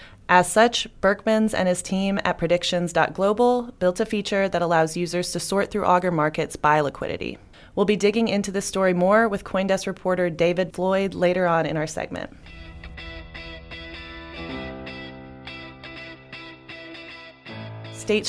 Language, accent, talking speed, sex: English, American, 130 wpm, female